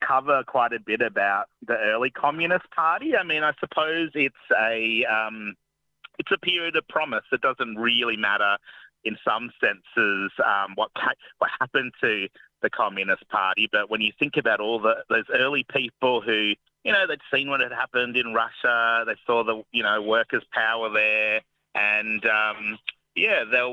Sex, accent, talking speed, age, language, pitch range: male, Australian, 170 wpm, 30-49, English, 105-125 Hz